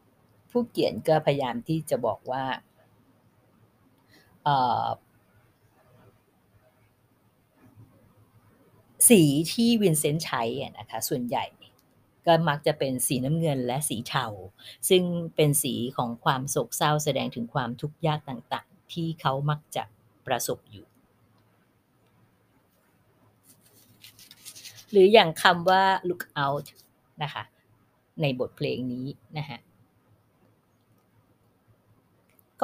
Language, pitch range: Thai, 120-155 Hz